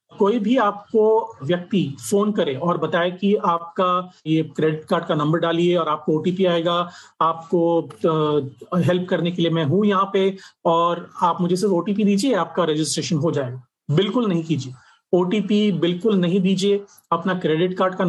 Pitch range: 165-195 Hz